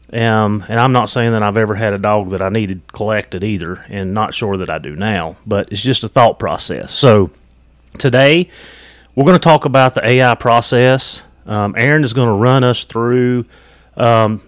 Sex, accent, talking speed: male, American, 200 wpm